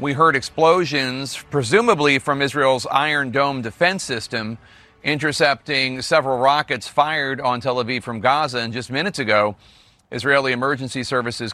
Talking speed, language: 135 wpm, English